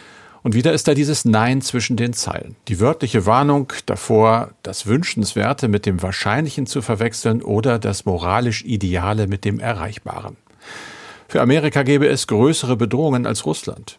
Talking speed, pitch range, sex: 150 wpm, 100-120 Hz, male